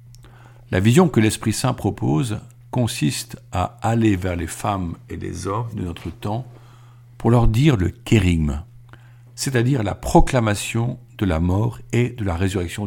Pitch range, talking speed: 100-120 Hz, 150 wpm